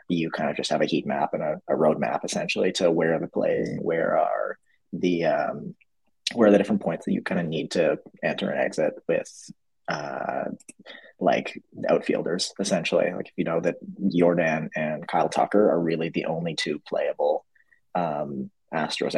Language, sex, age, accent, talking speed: English, male, 20-39, American, 185 wpm